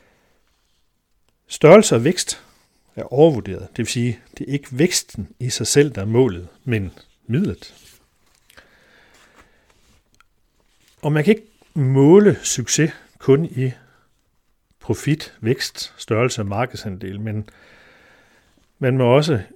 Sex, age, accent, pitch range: male, 60-79, native, 110-140 Hz